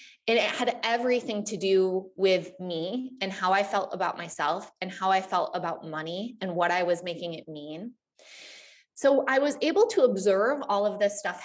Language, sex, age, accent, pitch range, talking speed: English, female, 20-39, American, 185-220 Hz, 195 wpm